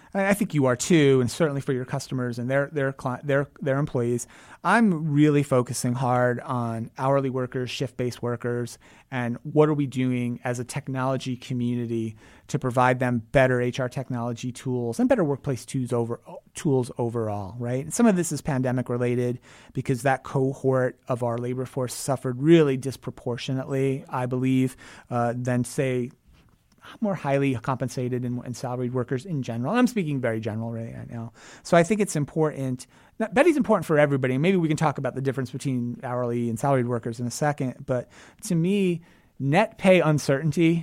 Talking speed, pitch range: 170 wpm, 125-145 Hz